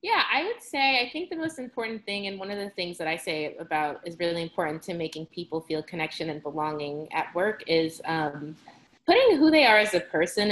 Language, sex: English, female